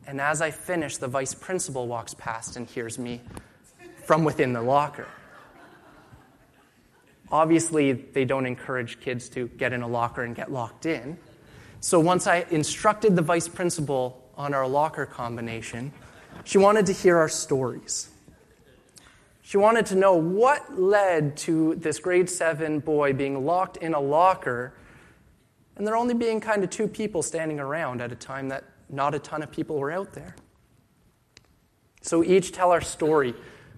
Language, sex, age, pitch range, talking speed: English, male, 20-39, 130-175 Hz, 160 wpm